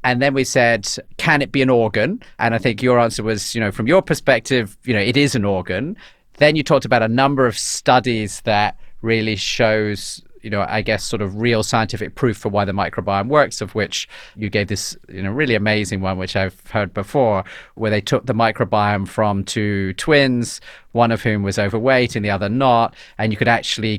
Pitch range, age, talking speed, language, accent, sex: 105-125 Hz, 40-59, 215 wpm, English, British, male